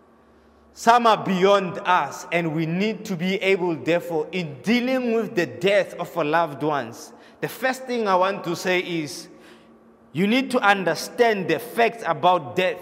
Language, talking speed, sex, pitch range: English, 170 wpm, male, 165-225 Hz